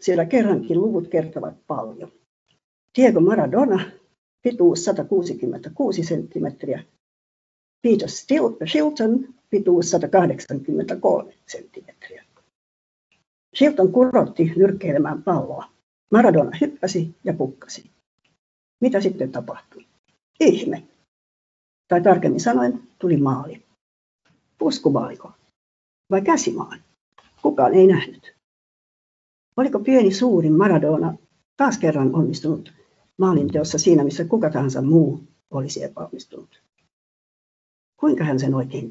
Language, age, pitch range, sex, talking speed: Finnish, 60-79, 160-245 Hz, female, 90 wpm